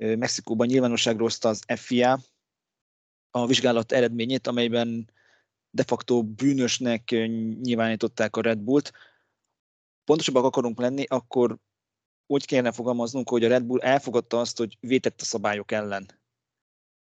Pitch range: 115-130 Hz